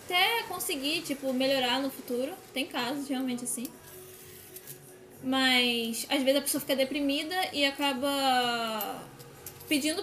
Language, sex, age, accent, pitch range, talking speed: Portuguese, female, 10-29, Brazilian, 250-285 Hz, 120 wpm